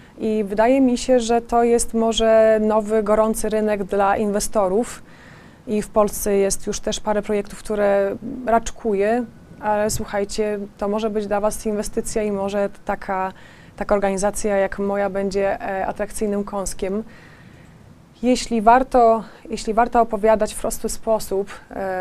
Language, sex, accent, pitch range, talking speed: Polish, female, native, 190-215 Hz, 130 wpm